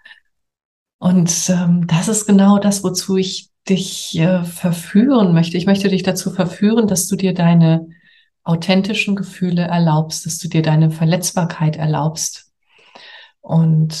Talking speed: 135 wpm